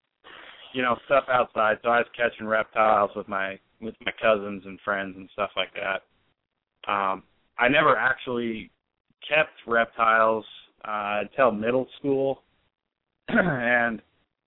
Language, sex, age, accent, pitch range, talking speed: English, male, 30-49, American, 105-125 Hz, 130 wpm